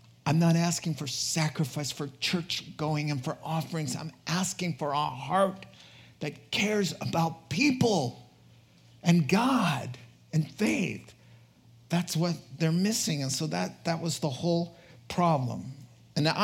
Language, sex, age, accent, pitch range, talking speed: English, male, 50-69, American, 125-165 Hz, 135 wpm